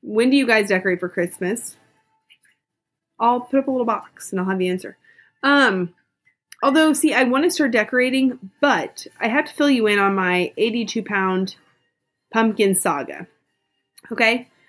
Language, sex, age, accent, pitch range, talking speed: English, female, 30-49, American, 190-270 Hz, 160 wpm